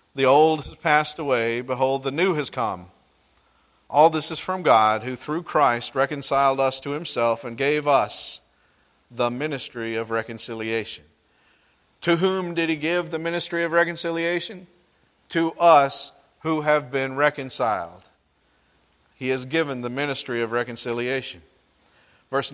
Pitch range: 120-155 Hz